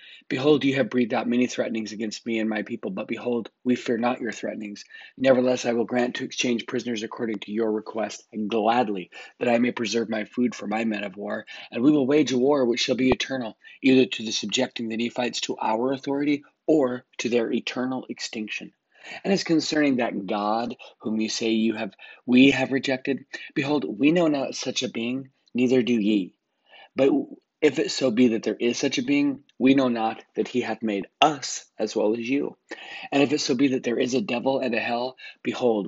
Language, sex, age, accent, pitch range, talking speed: English, male, 30-49, American, 110-130 Hz, 210 wpm